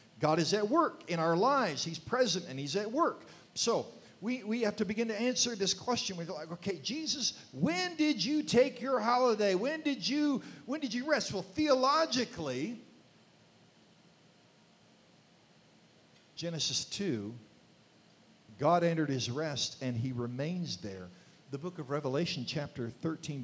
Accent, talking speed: American, 150 wpm